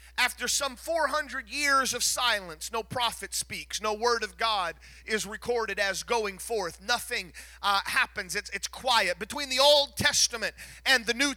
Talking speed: 165 wpm